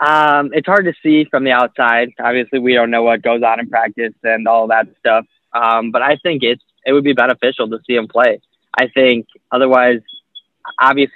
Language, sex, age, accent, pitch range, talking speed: English, male, 10-29, American, 115-125 Hz, 205 wpm